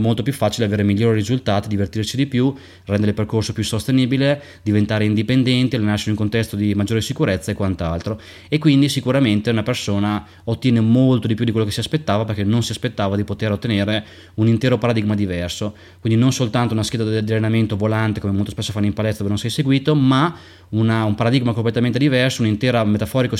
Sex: male